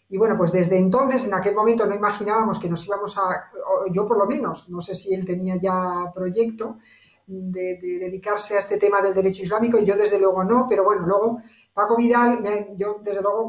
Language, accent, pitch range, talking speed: Spanish, Spanish, 190-230 Hz, 205 wpm